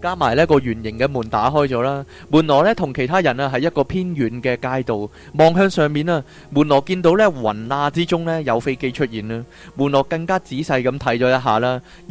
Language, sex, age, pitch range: Chinese, male, 20-39, 115-160 Hz